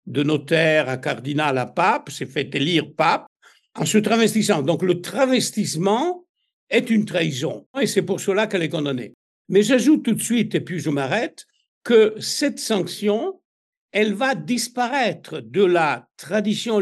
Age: 60-79